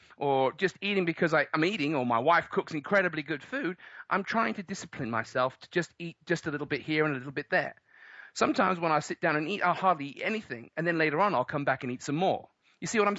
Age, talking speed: 40-59, 260 wpm